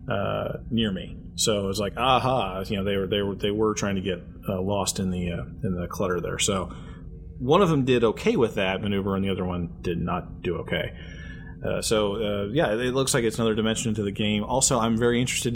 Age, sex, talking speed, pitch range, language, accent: 30-49, male, 240 wpm, 95-110 Hz, English, American